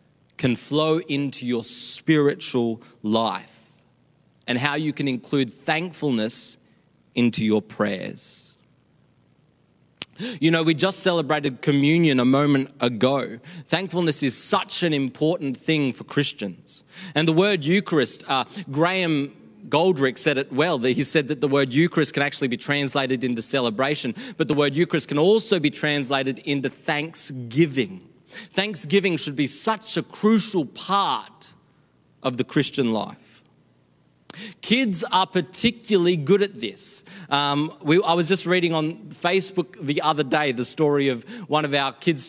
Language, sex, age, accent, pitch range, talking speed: English, male, 20-39, Australian, 140-175 Hz, 140 wpm